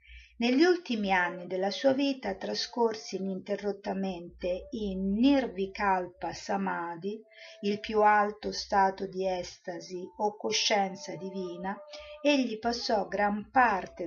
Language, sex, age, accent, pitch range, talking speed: Italian, female, 50-69, native, 180-230 Hz, 100 wpm